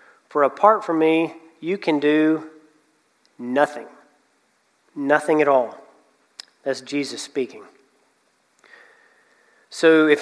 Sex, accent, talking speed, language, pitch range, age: male, American, 95 wpm, English, 140-170 Hz, 40-59